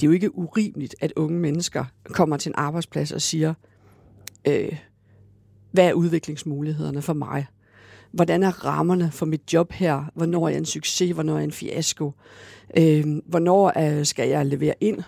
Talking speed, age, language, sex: 170 wpm, 50-69, Danish, female